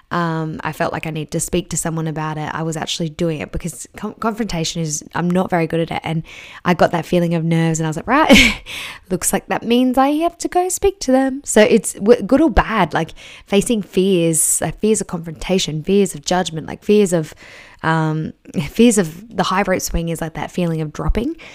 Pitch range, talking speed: 165-200 Hz, 215 wpm